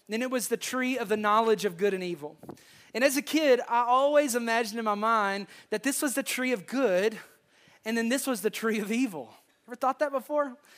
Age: 30-49